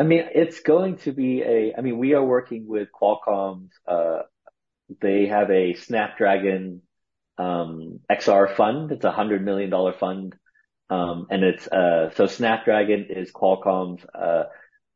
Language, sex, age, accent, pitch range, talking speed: English, male, 30-49, American, 95-115 Hz, 150 wpm